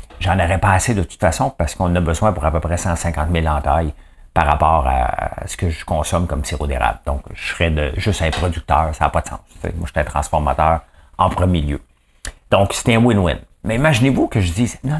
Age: 50-69